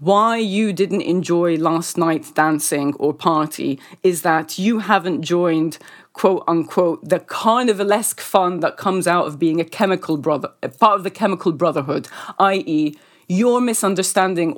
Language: English